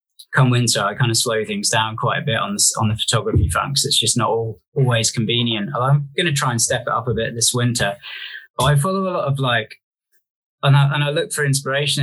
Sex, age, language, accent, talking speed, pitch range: male, 20-39, English, British, 245 wpm, 115-135 Hz